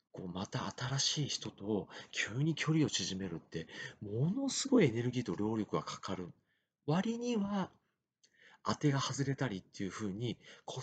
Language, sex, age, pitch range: Japanese, male, 40-59, 100-145 Hz